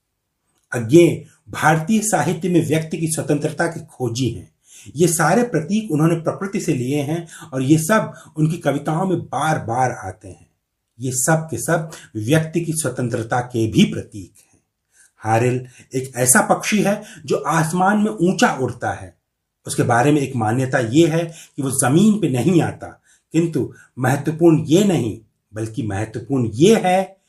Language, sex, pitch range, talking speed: Hindi, male, 115-165 Hz, 155 wpm